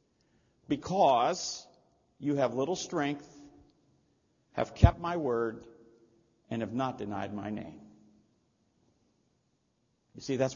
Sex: male